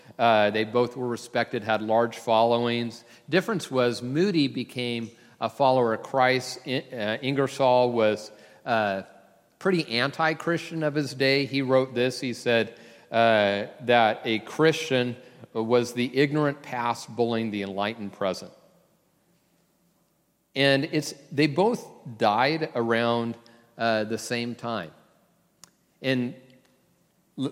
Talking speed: 120 wpm